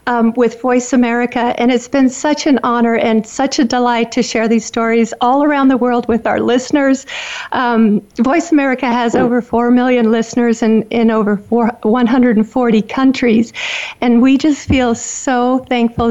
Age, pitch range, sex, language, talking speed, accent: 50-69, 230-275 Hz, female, English, 165 wpm, American